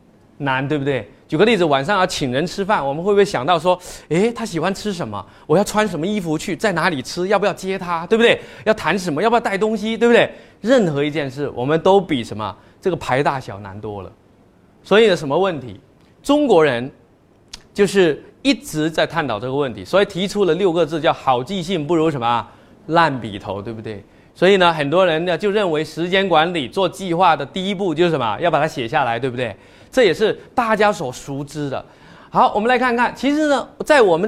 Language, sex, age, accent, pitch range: Chinese, male, 20-39, native, 140-215 Hz